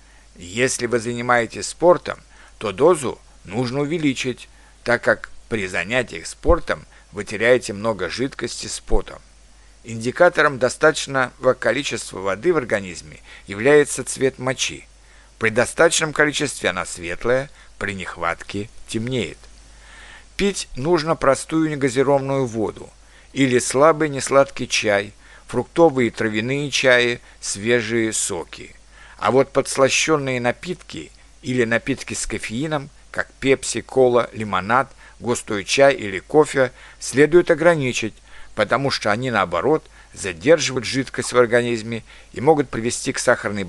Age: 60-79